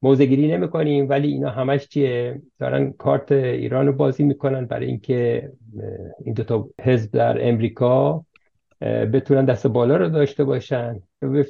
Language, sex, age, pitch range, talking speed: English, male, 50-69, 130-160 Hz, 135 wpm